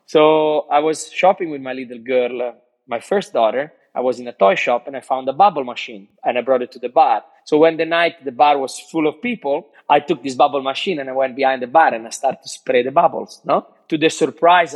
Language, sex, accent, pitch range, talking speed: English, male, Italian, 125-155 Hz, 255 wpm